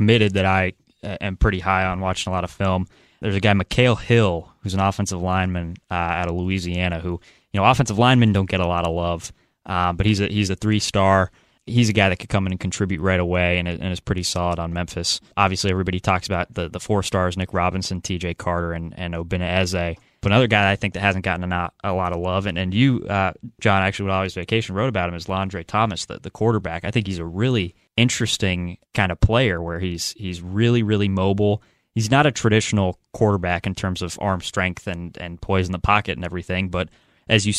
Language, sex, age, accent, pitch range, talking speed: English, male, 20-39, American, 90-105 Hz, 230 wpm